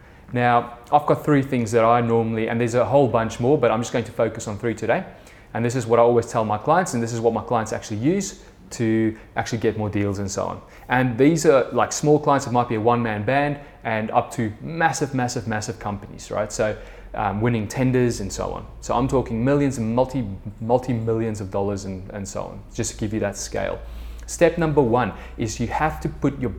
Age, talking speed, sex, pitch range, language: 20-39, 235 wpm, male, 110-135 Hz, English